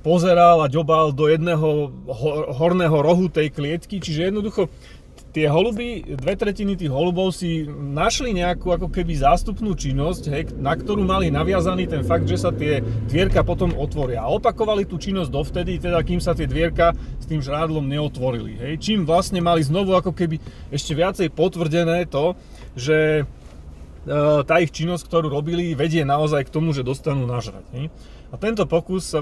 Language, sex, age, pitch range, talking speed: Slovak, male, 30-49, 130-165 Hz, 160 wpm